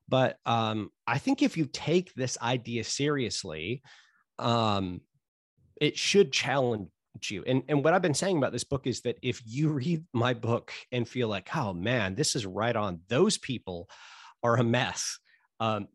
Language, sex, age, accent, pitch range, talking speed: English, male, 40-59, American, 105-135 Hz, 175 wpm